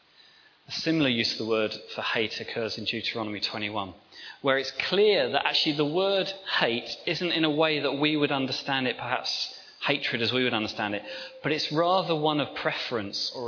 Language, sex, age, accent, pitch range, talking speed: English, male, 30-49, British, 115-155 Hz, 190 wpm